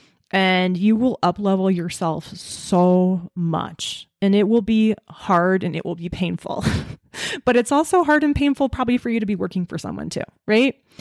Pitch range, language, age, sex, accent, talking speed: 170-215 Hz, English, 20-39, female, American, 180 wpm